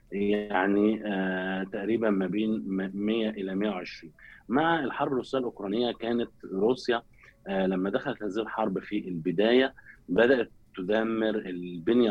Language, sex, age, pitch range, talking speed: Arabic, male, 20-39, 95-115 Hz, 125 wpm